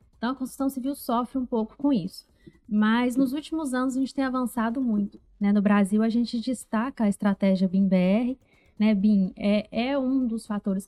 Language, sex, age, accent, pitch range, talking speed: Portuguese, female, 20-39, Brazilian, 195-240 Hz, 180 wpm